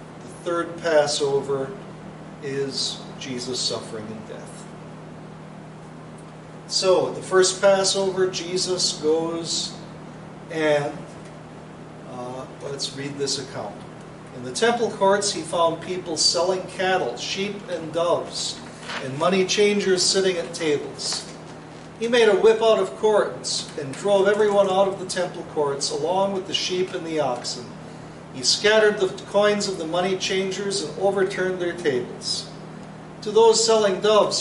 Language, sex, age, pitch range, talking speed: English, male, 50-69, 165-200 Hz, 130 wpm